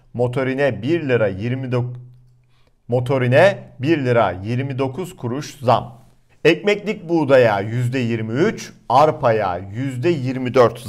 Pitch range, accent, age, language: 125-170 Hz, native, 50-69, Turkish